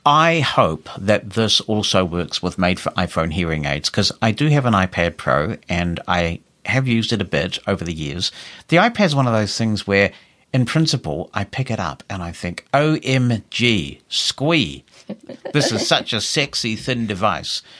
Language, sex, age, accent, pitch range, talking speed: English, male, 50-69, British, 85-110 Hz, 180 wpm